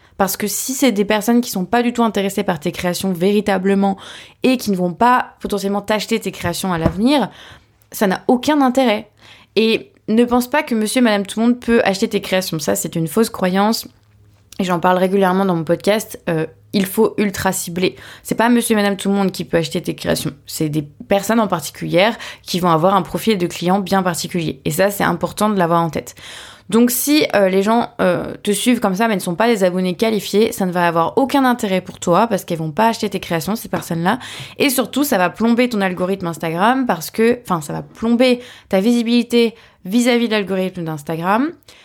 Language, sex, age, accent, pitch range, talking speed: French, female, 20-39, French, 185-235 Hz, 220 wpm